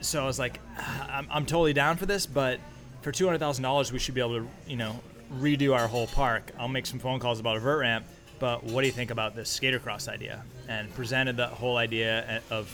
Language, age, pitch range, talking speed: English, 20-39, 115-130 Hz, 230 wpm